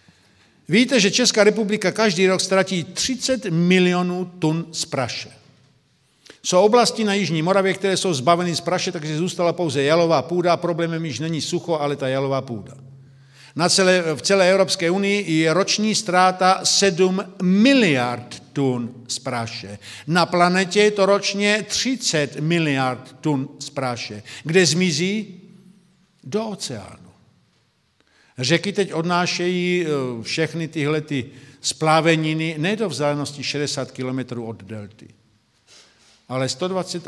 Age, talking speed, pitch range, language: 50-69, 130 wpm, 140-185 Hz, Czech